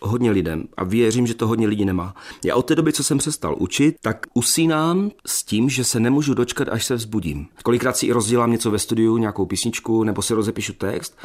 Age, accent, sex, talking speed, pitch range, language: 40-59, native, male, 220 wpm, 105-135 Hz, Czech